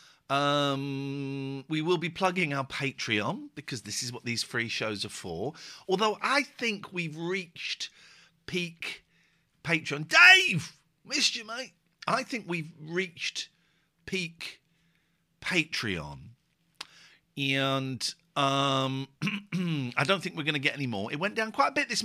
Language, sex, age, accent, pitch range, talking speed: English, male, 50-69, British, 135-185 Hz, 140 wpm